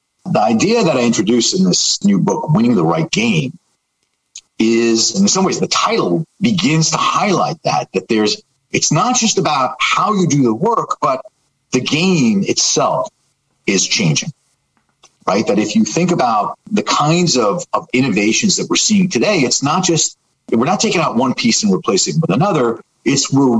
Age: 40-59